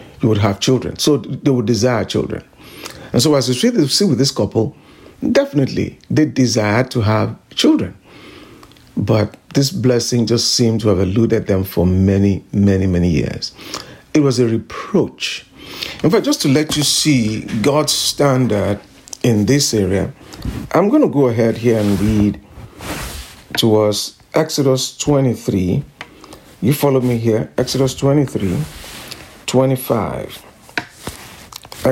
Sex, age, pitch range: male, 50-69, 110-145 Hz